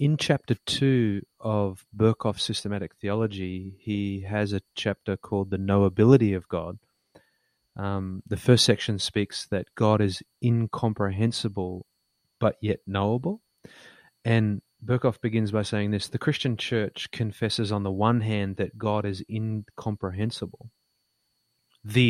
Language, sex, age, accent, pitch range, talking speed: English, male, 30-49, Australian, 100-115 Hz, 130 wpm